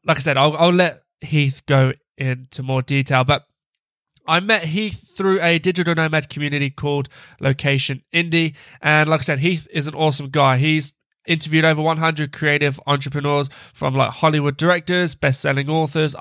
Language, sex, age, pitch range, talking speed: English, male, 20-39, 135-155 Hz, 165 wpm